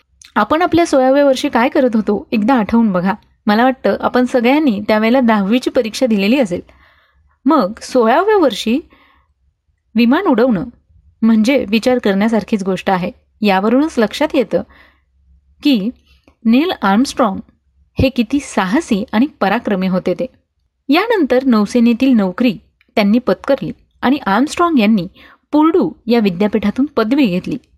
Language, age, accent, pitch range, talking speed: Marathi, 30-49, native, 205-270 Hz, 120 wpm